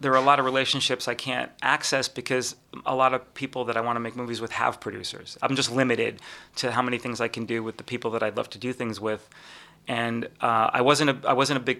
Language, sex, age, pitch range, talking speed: English, male, 30-49, 115-135 Hz, 265 wpm